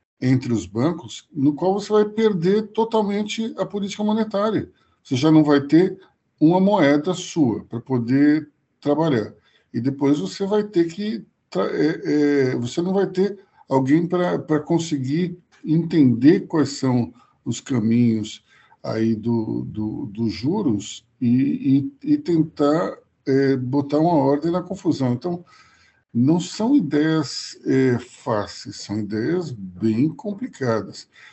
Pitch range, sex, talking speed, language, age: 120-165 Hz, male, 130 wpm, Portuguese, 50-69